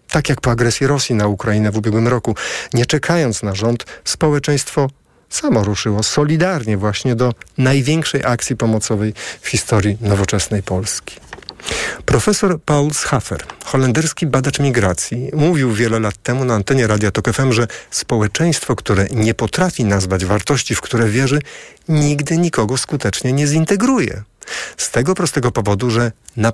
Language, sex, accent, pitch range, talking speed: Polish, male, native, 105-150 Hz, 140 wpm